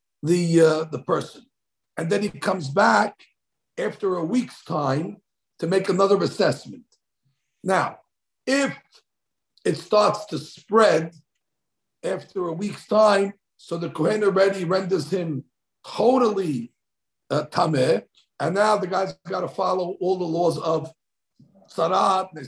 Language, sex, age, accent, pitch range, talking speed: English, male, 60-79, American, 160-210 Hz, 130 wpm